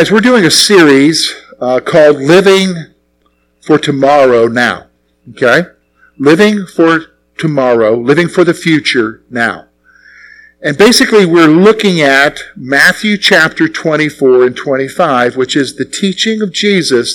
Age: 50-69